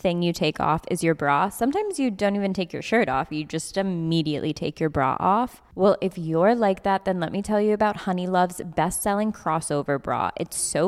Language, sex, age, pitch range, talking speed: English, female, 20-39, 165-210 Hz, 220 wpm